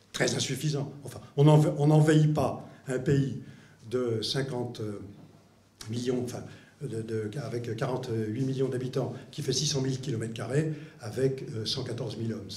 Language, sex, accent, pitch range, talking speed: French, male, French, 120-155 Hz, 140 wpm